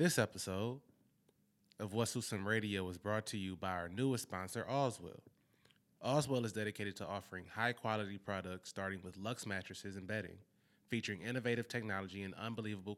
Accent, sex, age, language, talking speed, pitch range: American, male, 20-39, English, 155 wpm, 95-115 Hz